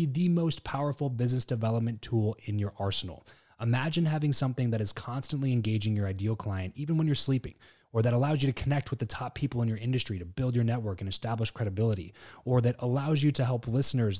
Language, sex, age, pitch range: English, male, 20-39, 105-125 Hz